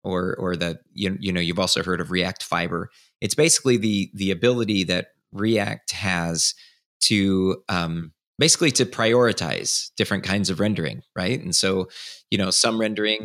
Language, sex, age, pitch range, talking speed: English, male, 30-49, 90-110 Hz, 165 wpm